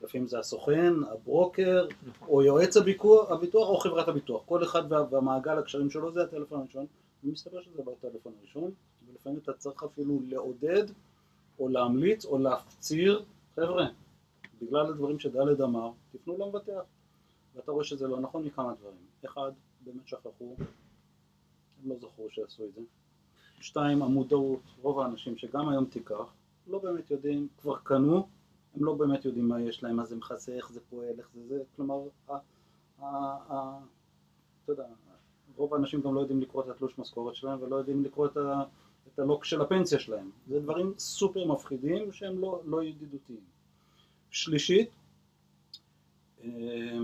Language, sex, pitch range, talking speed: Hebrew, male, 120-150 Hz, 150 wpm